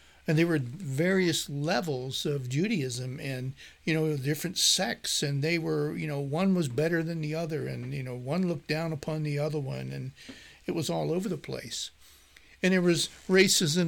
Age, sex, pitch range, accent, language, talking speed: 60-79, male, 140-165 Hz, American, English, 190 wpm